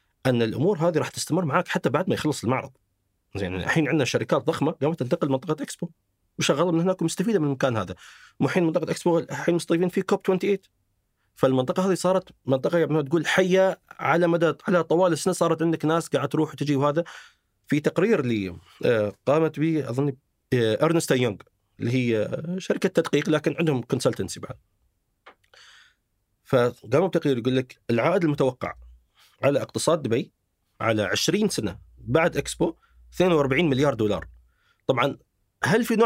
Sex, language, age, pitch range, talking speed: male, Arabic, 40-59, 115-170 Hz, 155 wpm